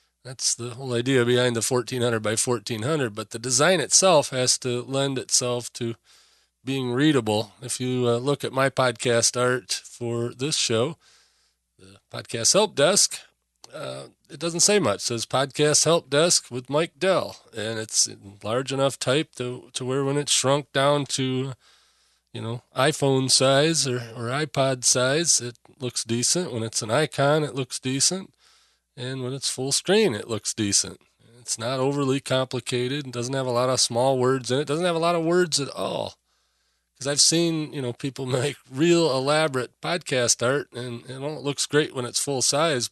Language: English